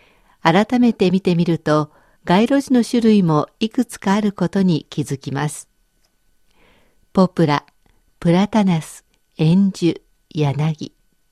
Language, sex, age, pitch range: Japanese, female, 50-69, 160-220 Hz